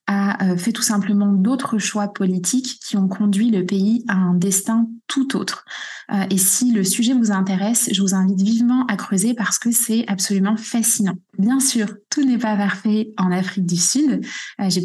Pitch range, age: 190-225 Hz, 20-39